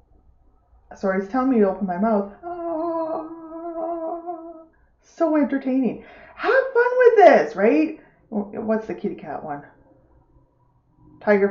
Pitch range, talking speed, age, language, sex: 180-290 Hz, 115 wpm, 30-49, English, female